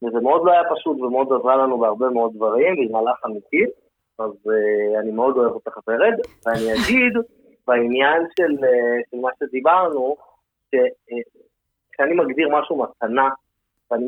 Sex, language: male, Hebrew